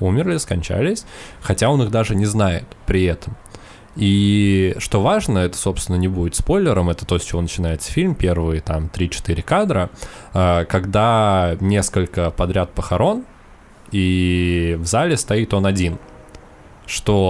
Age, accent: 20-39, native